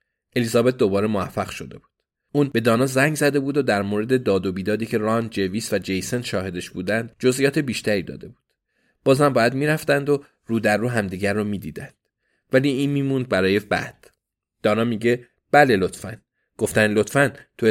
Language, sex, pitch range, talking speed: Persian, male, 105-135 Hz, 170 wpm